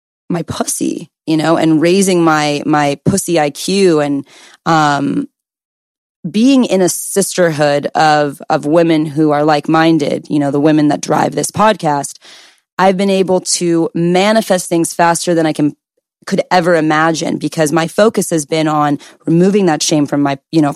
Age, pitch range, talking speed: 20-39, 150-185 Hz, 160 wpm